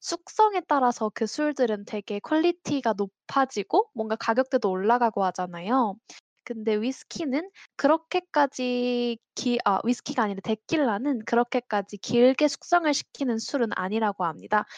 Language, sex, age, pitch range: Korean, female, 10-29, 215-300 Hz